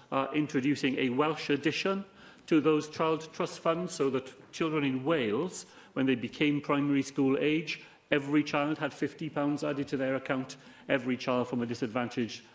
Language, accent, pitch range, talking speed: English, British, 130-160 Hz, 165 wpm